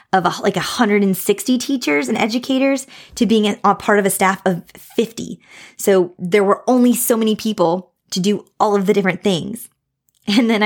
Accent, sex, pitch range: American, female, 175-215 Hz